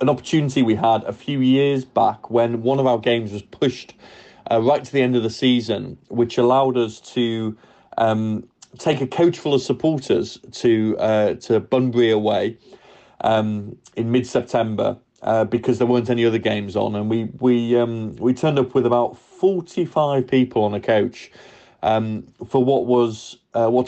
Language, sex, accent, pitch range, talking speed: English, male, British, 110-130 Hz, 175 wpm